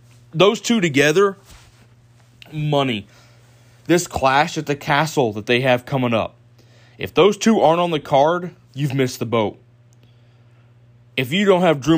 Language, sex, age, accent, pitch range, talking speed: English, male, 20-39, American, 120-150 Hz, 150 wpm